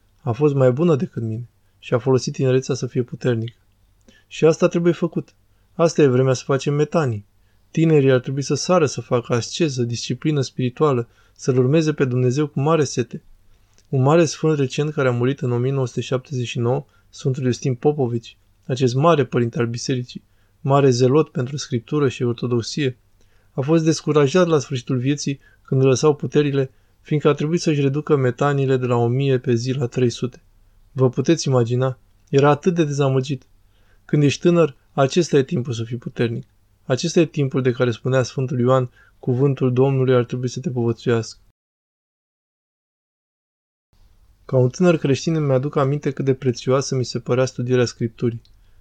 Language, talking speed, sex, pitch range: Romanian, 160 wpm, male, 120-145 Hz